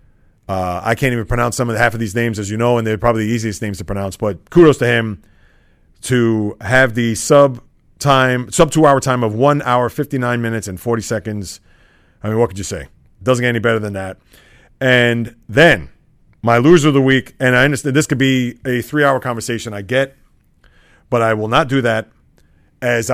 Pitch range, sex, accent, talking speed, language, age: 110-135 Hz, male, American, 215 wpm, English, 30-49